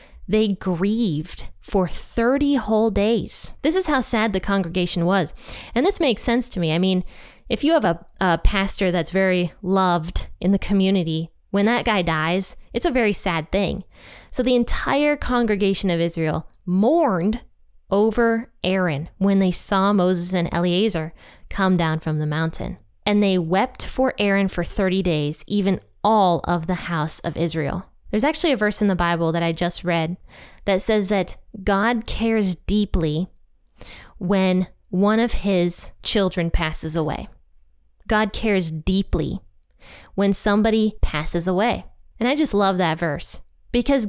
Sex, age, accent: female, 20-39, American